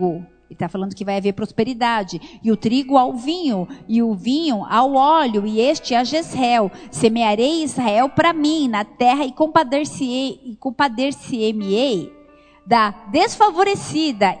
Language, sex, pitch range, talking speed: Portuguese, female, 200-265 Hz, 140 wpm